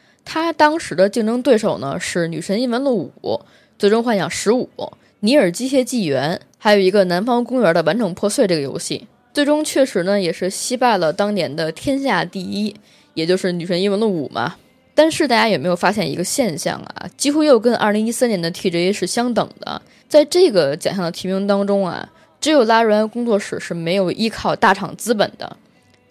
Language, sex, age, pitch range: Chinese, female, 20-39, 180-255 Hz